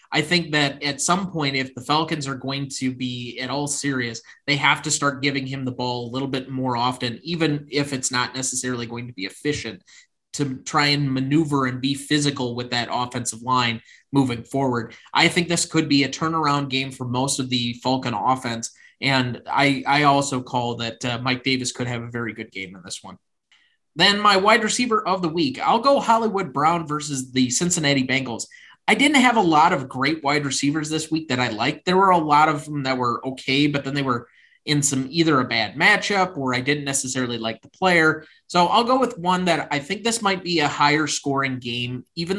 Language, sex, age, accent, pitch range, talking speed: English, male, 20-39, American, 125-155 Hz, 220 wpm